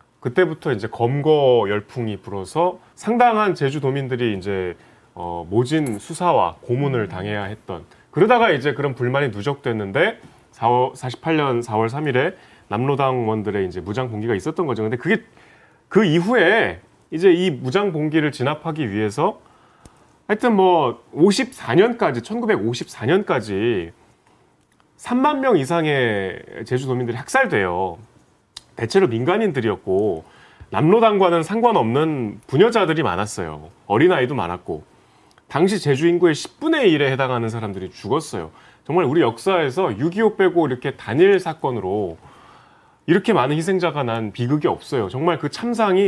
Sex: male